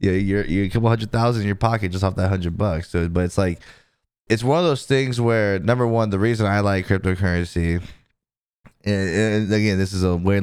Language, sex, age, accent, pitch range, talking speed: English, male, 20-39, American, 85-105 Hz, 225 wpm